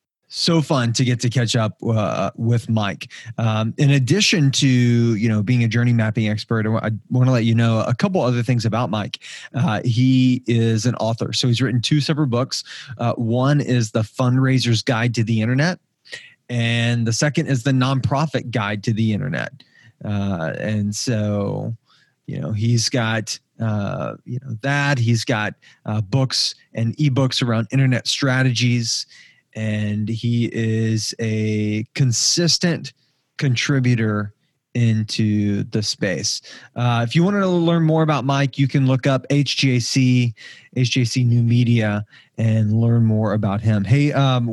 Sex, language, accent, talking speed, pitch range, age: male, English, American, 155 wpm, 110-135 Hz, 20-39